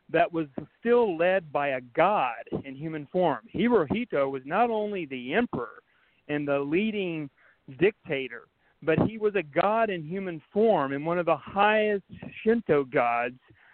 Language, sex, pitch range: English, male, 140-185 Hz